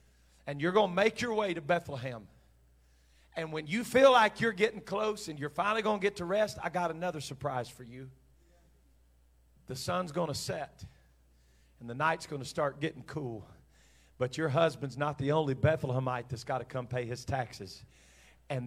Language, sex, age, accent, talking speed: English, male, 40-59, American, 190 wpm